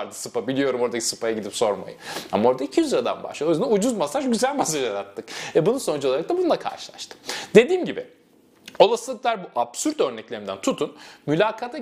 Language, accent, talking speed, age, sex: Turkish, native, 175 wpm, 30-49, male